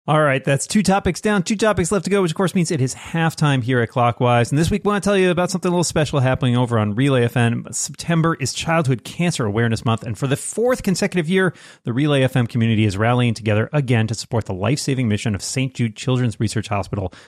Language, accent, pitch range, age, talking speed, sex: English, American, 105-140 Hz, 30-49, 245 wpm, male